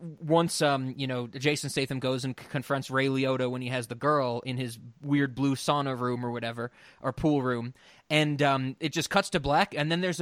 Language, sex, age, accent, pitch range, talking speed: English, male, 20-39, American, 125-155 Hz, 225 wpm